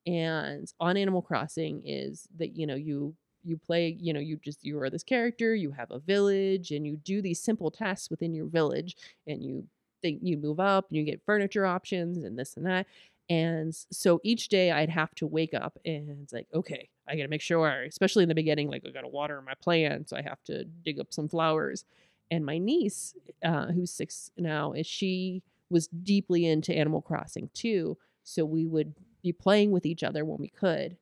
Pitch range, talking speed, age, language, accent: 155-180 Hz, 215 wpm, 30-49, English, American